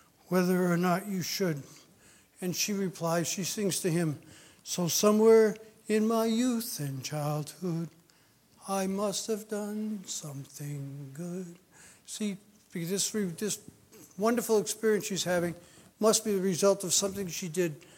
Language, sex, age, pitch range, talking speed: English, male, 60-79, 165-195 Hz, 135 wpm